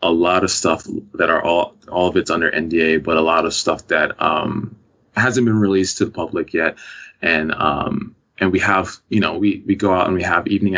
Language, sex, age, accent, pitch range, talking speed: English, male, 20-39, American, 85-105 Hz, 230 wpm